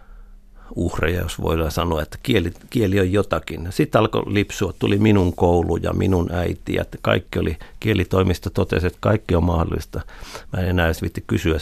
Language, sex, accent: Finnish, male, native